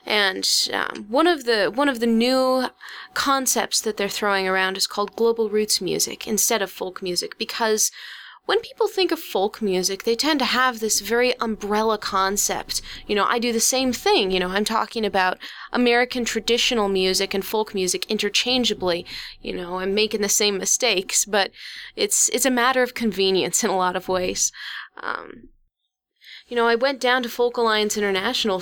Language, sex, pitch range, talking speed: English, female, 195-240 Hz, 180 wpm